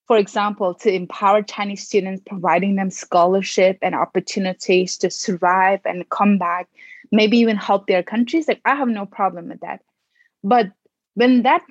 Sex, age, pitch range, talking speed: female, 20-39, 195-240 Hz, 160 wpm